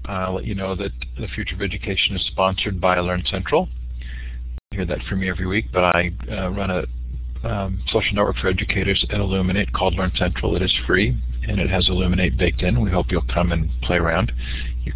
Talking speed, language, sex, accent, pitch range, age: 215 wpm, English, male, American, 65-95 Hz, 50-69